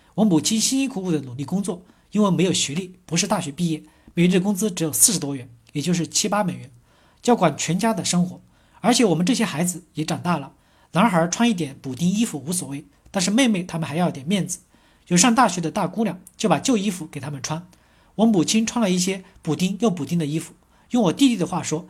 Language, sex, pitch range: Chinese, male, 160-215 Hz